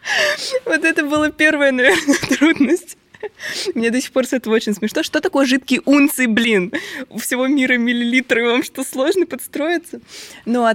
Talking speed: 165 wpm